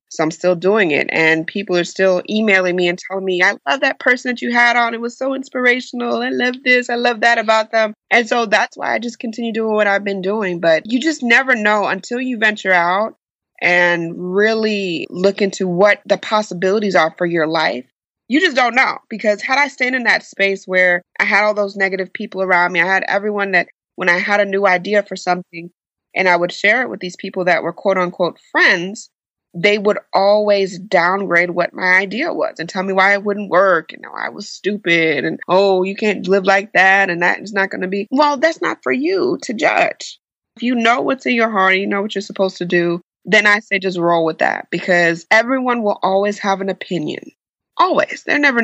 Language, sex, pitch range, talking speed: English, female, 180-225 Hz, 225 wpm